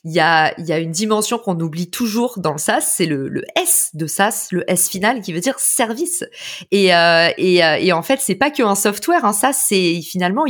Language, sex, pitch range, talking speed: French, female, 185-245 Hz, 235 wpm